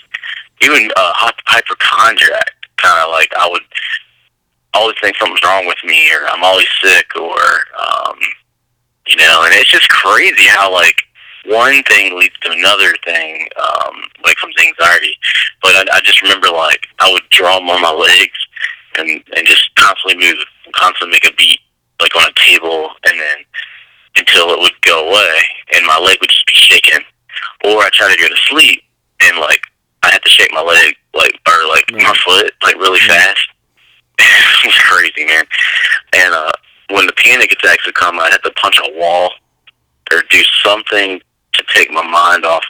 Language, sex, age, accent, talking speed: English, male, 30-49, American, 180 wpm